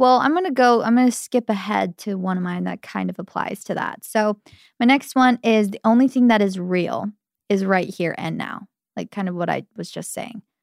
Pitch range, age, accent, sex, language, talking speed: 190-230 Hz, 20-39, American, female, English, 250 wpm